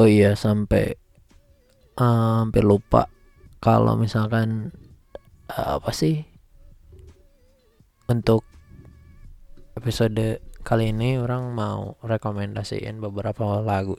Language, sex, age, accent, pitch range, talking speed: Indonesian, male, 20-39, native, 100-115 Hz, 85 wpm